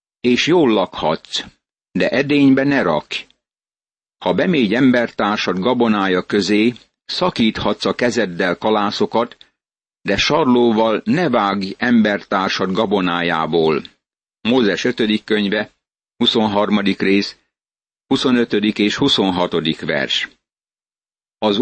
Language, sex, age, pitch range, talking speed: Hungarian, male, 60-79, 100-120 Hz, 90 wpm